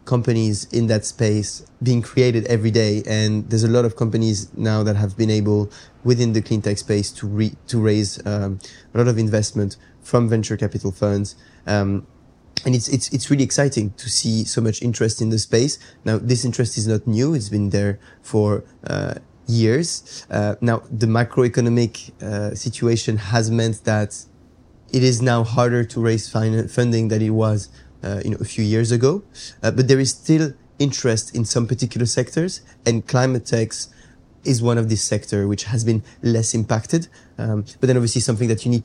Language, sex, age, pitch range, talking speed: English, male, 20-39, 105-120 Hz, 190 wpm